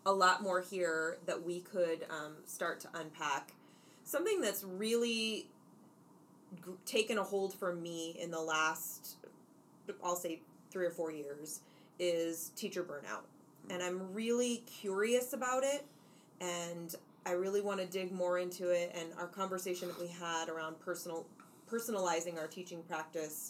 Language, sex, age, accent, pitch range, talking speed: English, female, 30-49, American, 170-200 Hz, 150 wpm